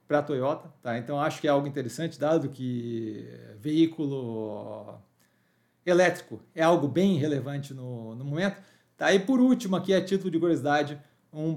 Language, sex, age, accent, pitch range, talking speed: Portuguese, male, 40-59, Brazilian, 145-180 Hz, 155 wpm